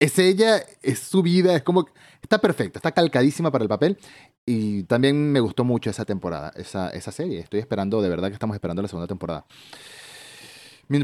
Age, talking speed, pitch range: 30-49, 190 wpm, 110-145 Hz